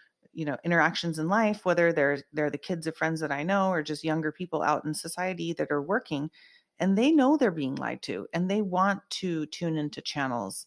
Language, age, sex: English, 30-49, female